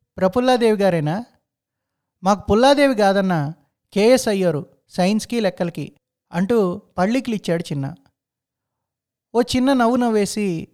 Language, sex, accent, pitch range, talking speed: Telugu, male, native, 160-215 Hz, 90 wpm